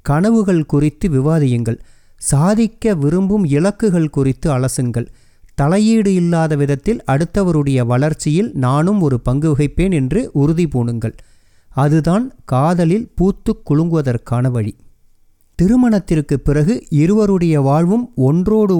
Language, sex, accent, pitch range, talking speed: Tamil, male, native, 135-195 Hz, 95 wpm